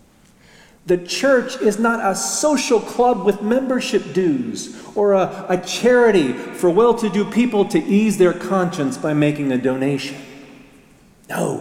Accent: American